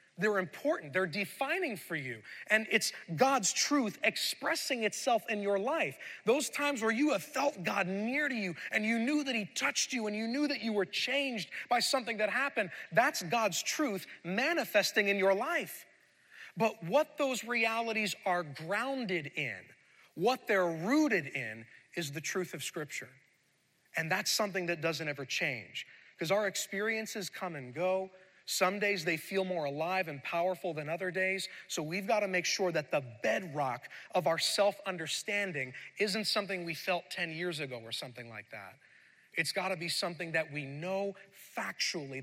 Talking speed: 175 wpm